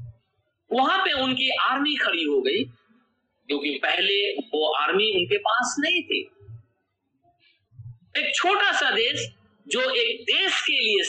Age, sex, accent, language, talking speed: 50-69, male, native, Hindi, 130 wpm